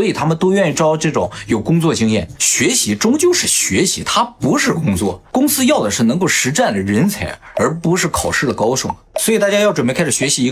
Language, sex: Chinese, male